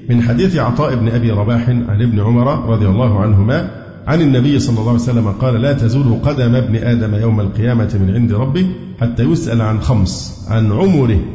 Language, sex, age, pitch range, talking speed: Arabic, male, 50-69, 110-130 Hz, 185 wpm